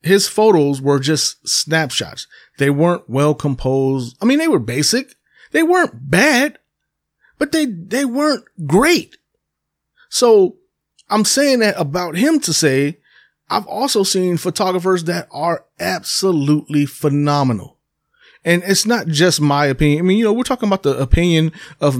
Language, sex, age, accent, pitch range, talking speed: English, male, 30-49, American, 135-185 Hz, 145 wpm